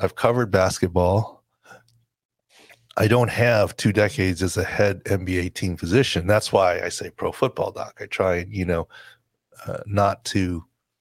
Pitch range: 95-115 Hz